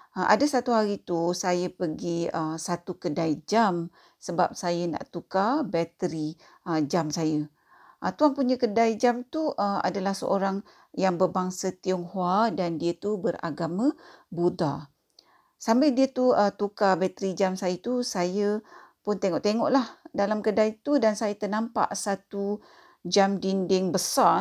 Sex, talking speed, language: female, 140 wpm, Malay